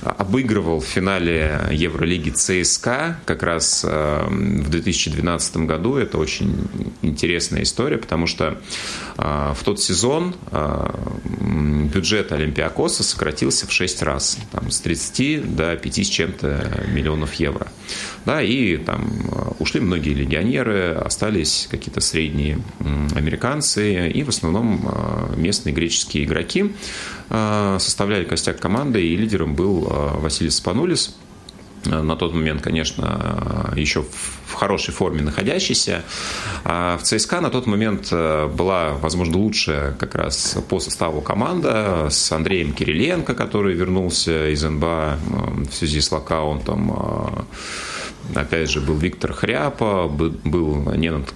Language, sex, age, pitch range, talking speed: Russian, male, 30-49, 75-95 Hz, 115 wpm